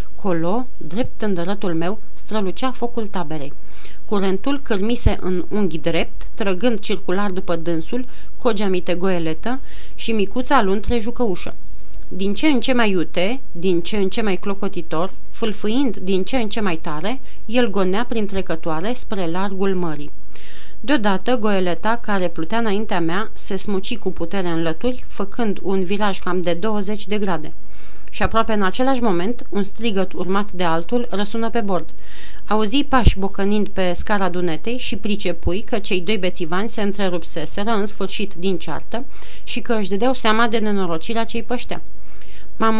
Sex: female